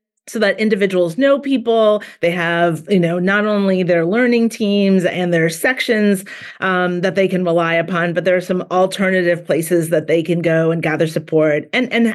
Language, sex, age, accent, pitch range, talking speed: English, female, 40-59, American, 170-205 Hz, 190 wpm